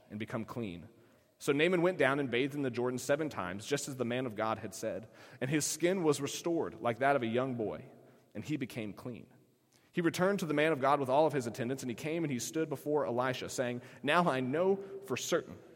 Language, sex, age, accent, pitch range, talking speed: English, male, 30-49, American, 120-150 Hz, 240 wpm